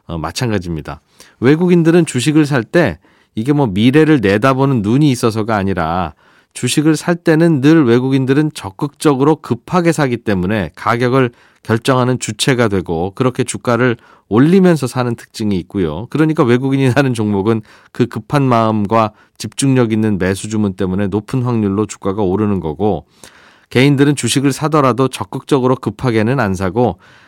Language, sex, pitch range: Korean, male, 105-135 Hz